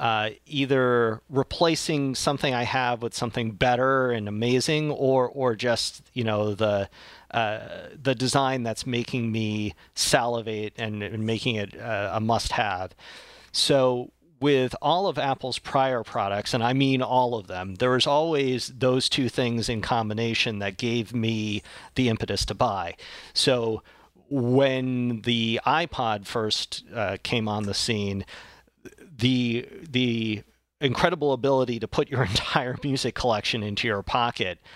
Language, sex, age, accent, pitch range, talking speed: English, male, 40-59, American, 105-130 Hz, 140 wpm